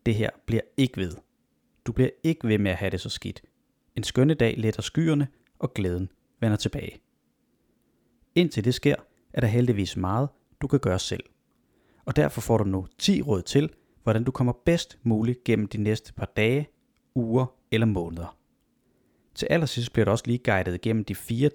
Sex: male